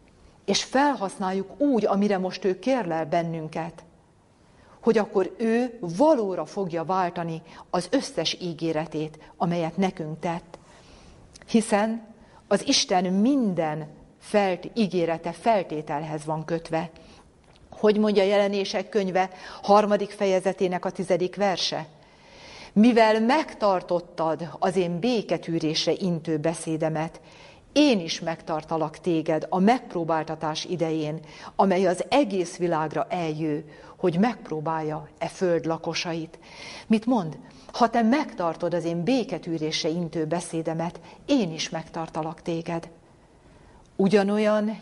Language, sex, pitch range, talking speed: Hungarian, female, 160-200 Hz, 105 wpm